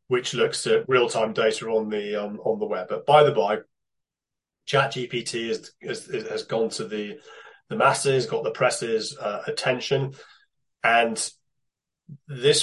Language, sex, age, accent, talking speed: English, male, 30-49, British, 145 wpm